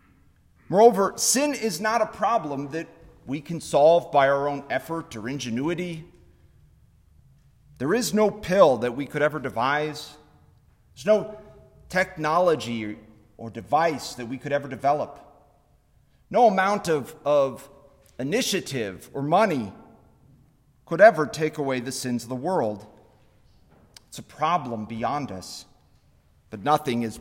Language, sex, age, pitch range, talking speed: English, male, 40-59, 110-155 Hz, 130 wpm